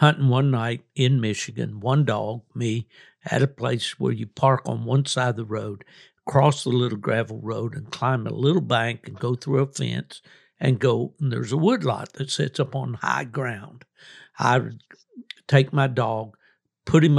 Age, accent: 60-79, American